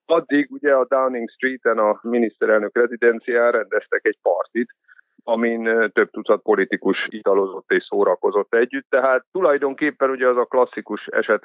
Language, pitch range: Hungarian, 120-165 Hz